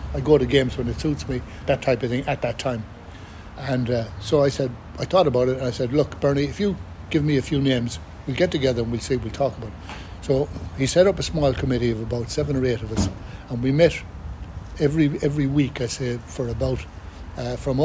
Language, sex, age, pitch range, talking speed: English, male, 60-79, 115-145 Hz, 240 wpm